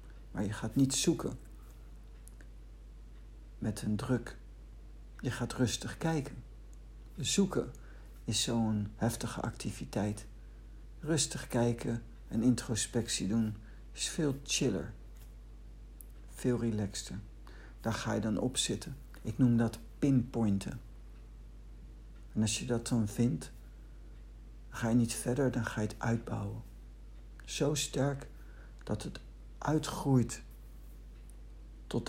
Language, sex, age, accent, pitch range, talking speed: Dutch, male, 60-79, Dutch, 105-125 Hz, 110 wpm